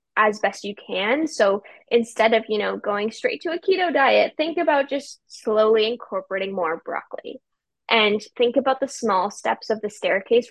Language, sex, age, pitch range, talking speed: English, female, 10-29, 205-260 Hz, 175 wpm